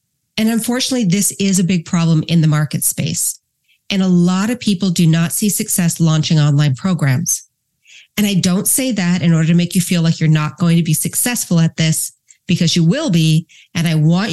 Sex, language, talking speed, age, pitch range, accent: female, English, 210 wpm, 40-59, 155-185 Hz, American